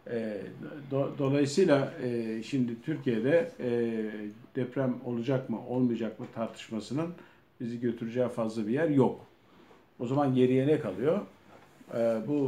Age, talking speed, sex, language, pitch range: 50-69, 100 wpm, male, Turkish, 110-135 Hz